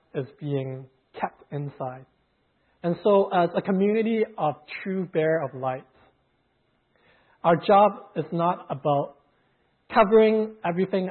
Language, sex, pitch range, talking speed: English, male, 140-175 Hz, 115 wpm